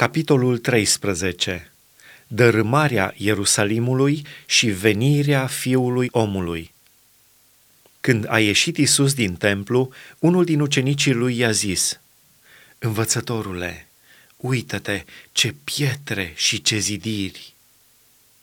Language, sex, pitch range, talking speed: Romanian, male, 105-135 Hz, 90 wpm